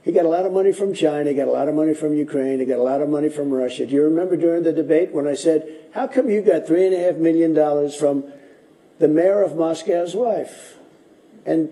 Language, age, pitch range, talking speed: English, 60-79, 140-180 Hz, 255 wpm